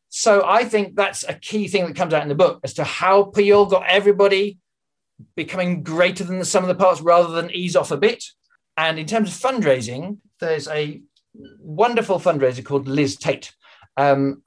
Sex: male